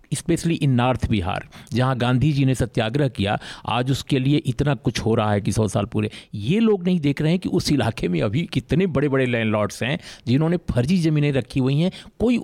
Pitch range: 115-170 Hz